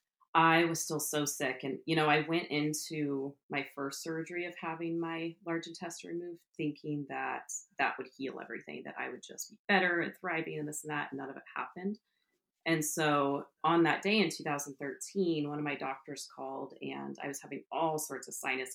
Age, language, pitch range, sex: 30-49, English, 145-170 Hz, female